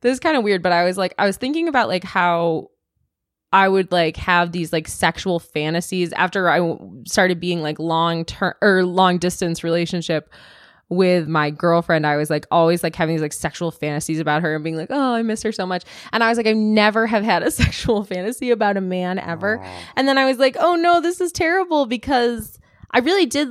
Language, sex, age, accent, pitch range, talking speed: English, female, 20-39, American, 160-220 Hz, 220 wpm